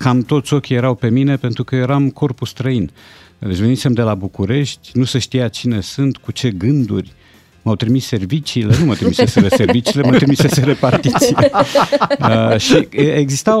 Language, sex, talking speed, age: Romanian, male, 160 wpm, 50-69